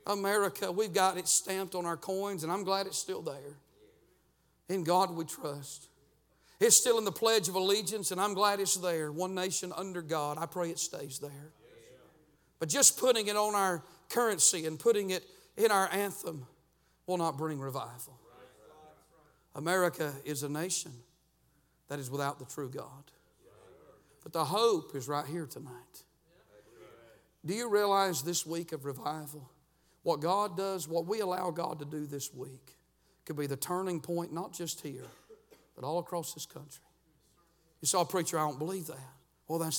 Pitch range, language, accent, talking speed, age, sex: 145-190 Hz, English, American, 170 wpm, 50-69, male